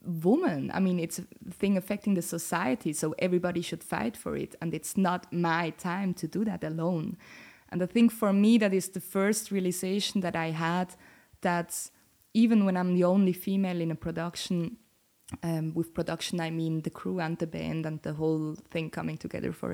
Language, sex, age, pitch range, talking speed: English, female, 20-39, 165-190 Hz, 195 wpm